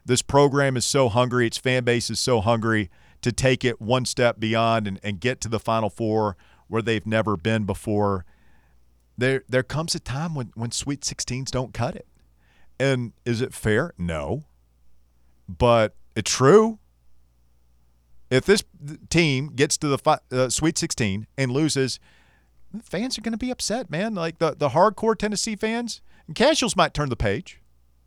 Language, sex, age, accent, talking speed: English, male, 40-59, American, 170 wpm